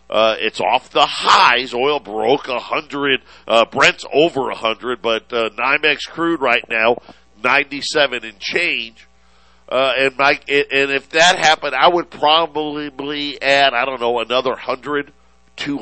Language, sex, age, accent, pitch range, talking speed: English, male, 50-69, American, 110-145 Hz, 150 wpm